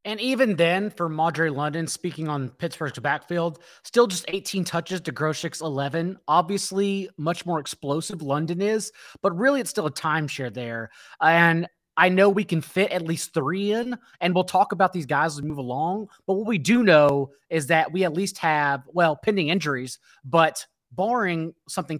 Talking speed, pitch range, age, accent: 185 wpm, 145-185 Hz, 20-39, American